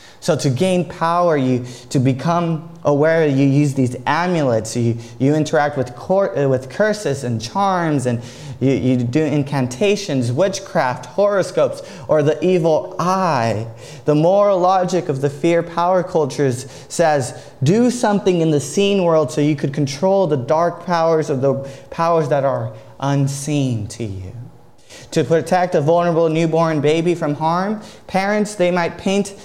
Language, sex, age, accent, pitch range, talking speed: English, male, 20-39, American, 135-180 Hz, 150 wpm